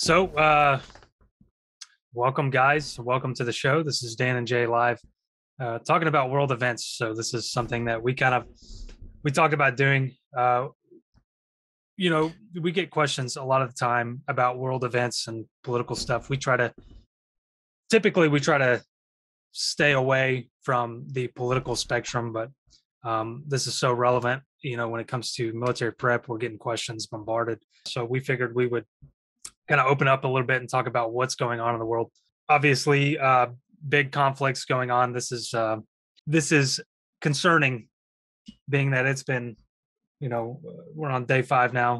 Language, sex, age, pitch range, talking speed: English, male, 20-39, 115-135 Hz, 175 wpm